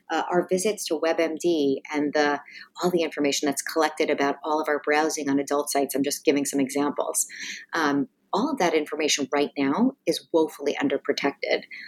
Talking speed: 170 wpm